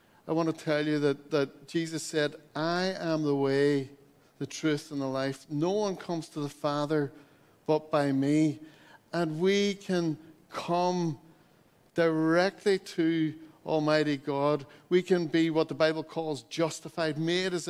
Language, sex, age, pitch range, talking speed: English, male, 60-79, 155-180 Hz, 155 wpm